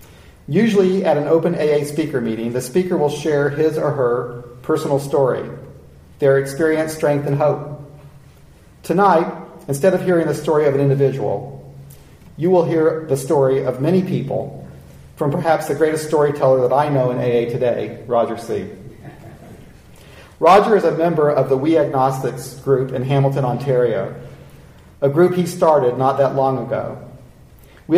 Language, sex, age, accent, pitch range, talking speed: English, male, 40-59, American, 125-160 Hz, 155 wpm